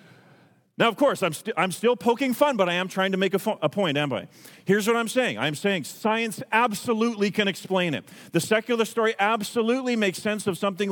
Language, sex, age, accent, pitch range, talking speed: English, male, 40-59, American, 140-200 Hz, 220 wpm